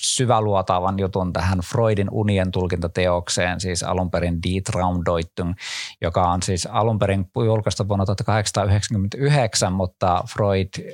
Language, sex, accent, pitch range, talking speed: Finnish, male, native, 90-105 Hz, 110 wpm